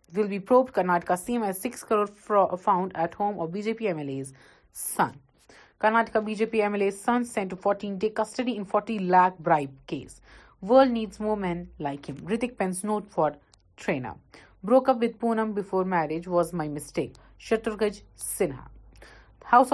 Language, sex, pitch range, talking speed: Urdu, female, 170-220 Hz, 165 wpm